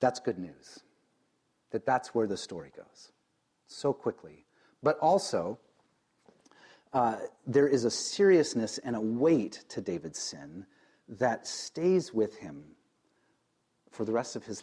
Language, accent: English, American